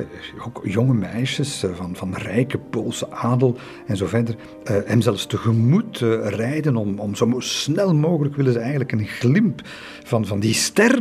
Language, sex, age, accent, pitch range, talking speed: Dutch, male, 50-69, Belgian, 105-130 Hz, 160 wpm